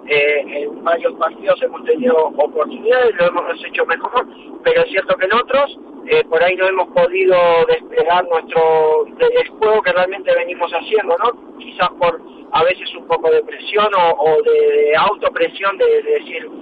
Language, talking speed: Spanish, 165 wpm